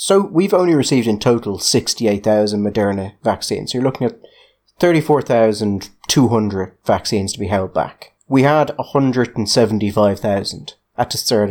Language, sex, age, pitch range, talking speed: English, male, 30-49, 105-140 Hz, 125 wpm